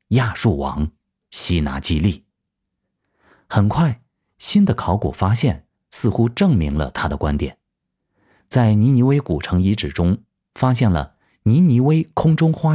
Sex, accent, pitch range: male, native, 80-125 Hz